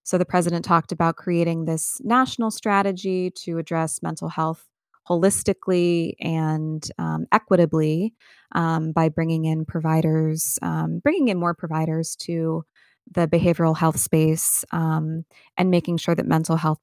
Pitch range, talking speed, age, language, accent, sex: 160-180 Hz, 140 wpm, 20-39, English, American, female